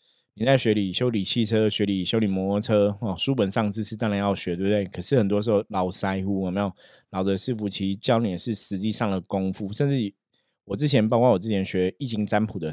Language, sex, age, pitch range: Chinese, male, 20-39, 95-120 Hz